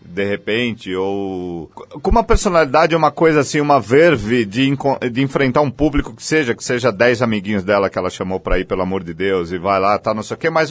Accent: Brazilian